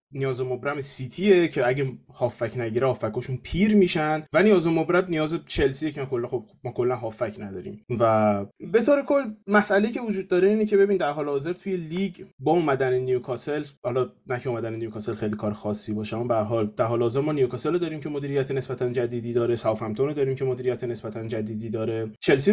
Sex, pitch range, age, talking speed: male, 125-165 Hz, 20-39, 185 wpm